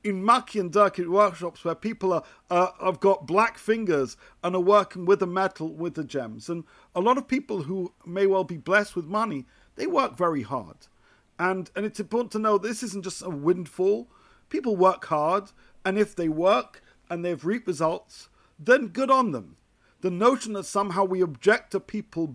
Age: 50-69